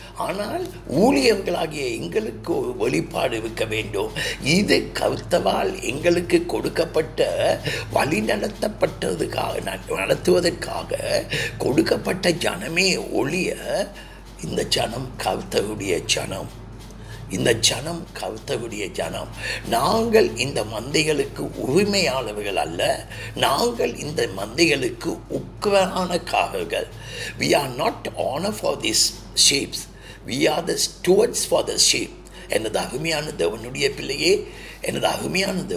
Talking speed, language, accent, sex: 80 wpm, Tamil, native, male